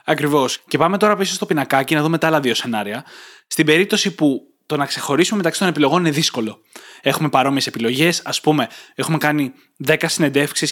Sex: male